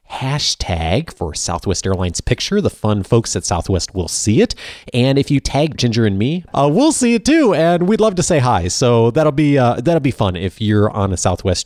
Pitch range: 95-135 Hz